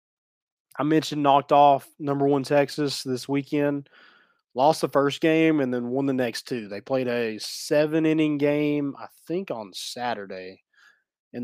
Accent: American